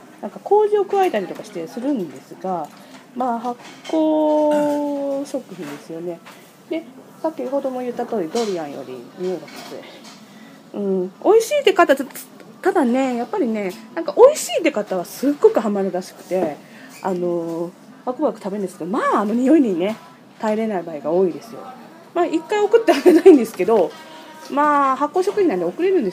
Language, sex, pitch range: Japanese, female, 185-300 Hz